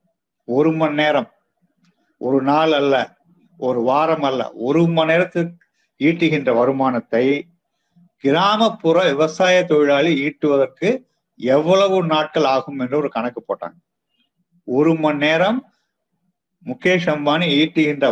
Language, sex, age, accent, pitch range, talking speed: Tamil, male, 50-69, native, 150-190 Hz, 100 wpm